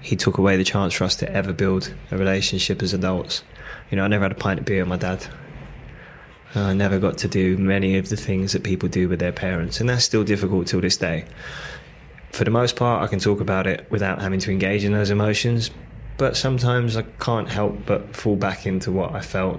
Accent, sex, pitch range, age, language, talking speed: British, male, 95-110 Hz, 20-39, English, 235 wpm